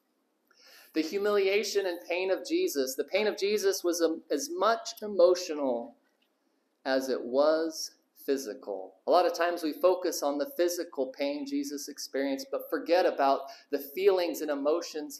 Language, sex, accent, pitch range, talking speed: English, male, American, 160-205 Hz, 145 wpm